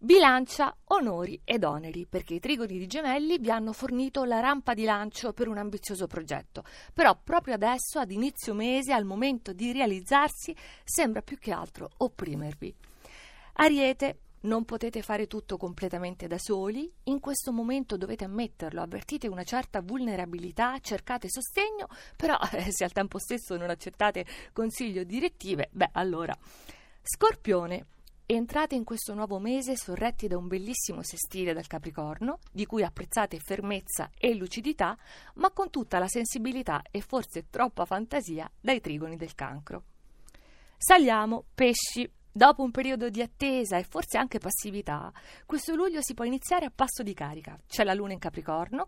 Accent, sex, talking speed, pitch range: native, female, 150 wpm, 190-260 Hz